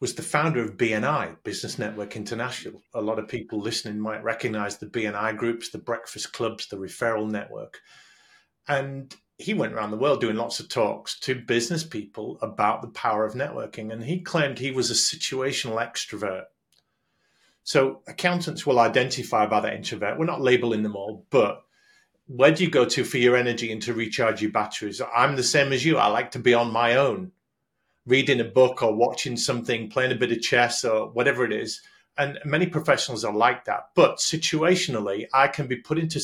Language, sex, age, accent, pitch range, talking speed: English, male, 40-59, British, 115-155 Hz, 190 wpm